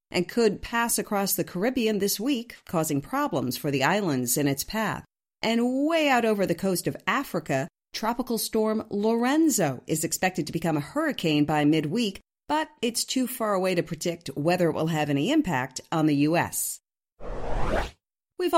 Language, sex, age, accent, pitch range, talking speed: English, female, 40-59, American, 165-235 Hz, 170 wpm